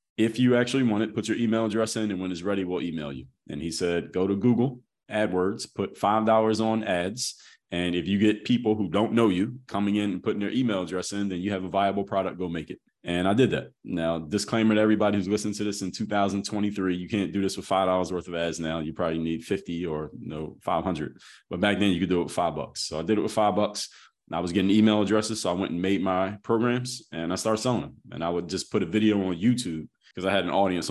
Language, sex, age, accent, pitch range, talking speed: English, male, 30-49, American, 90-110 Hz, 260 wpm